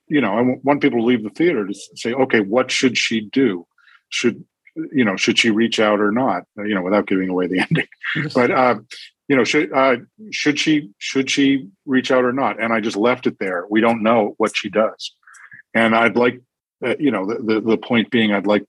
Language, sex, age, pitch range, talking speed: English, male, 50-69, 100-125 Hz, 230 wpm